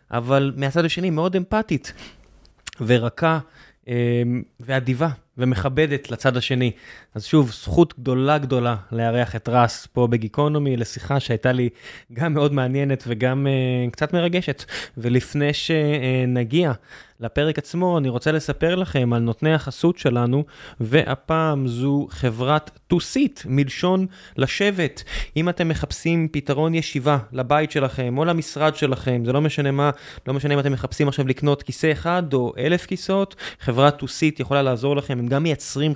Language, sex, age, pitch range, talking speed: Hebrew, male, 20-39, 130-155 Hz, 140 wpm